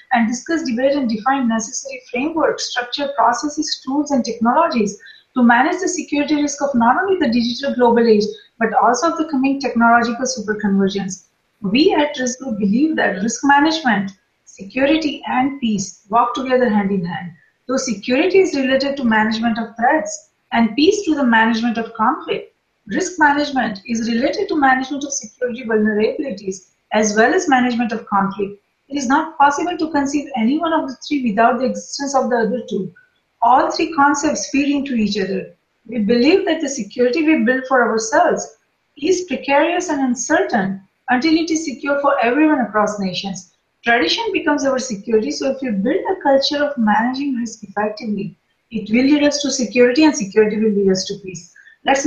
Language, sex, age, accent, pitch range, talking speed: English, female, 30-49, Indian, 220-290 Hz, 175 wpm